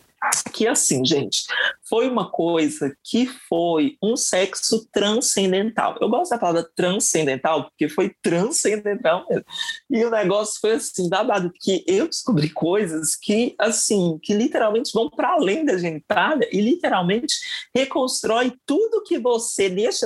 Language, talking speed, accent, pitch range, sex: Portuguese, 145 wpm, Brazilian, 180-270 Hz, male